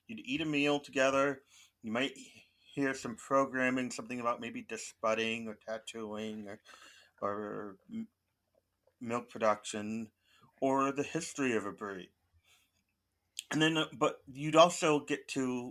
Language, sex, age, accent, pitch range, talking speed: English, male, 30-49, American, 95-135 Hz, 125 wpm